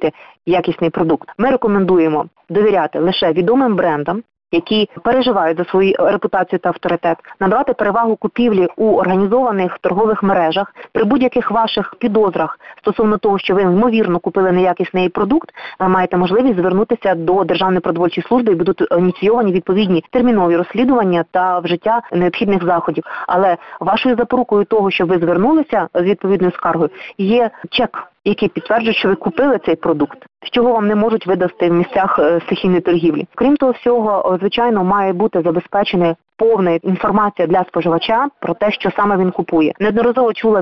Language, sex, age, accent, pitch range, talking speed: Ukrainian, female, 30-49, native, 180-215 Hz, 150 wpm